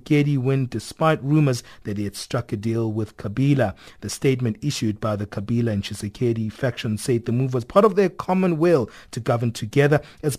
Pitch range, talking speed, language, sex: 110-140 Hz, 195 wpm, English, male